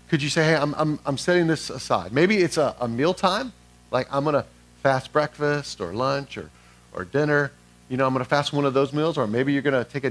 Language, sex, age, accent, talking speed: English, male, 40-59, American, 260 wpm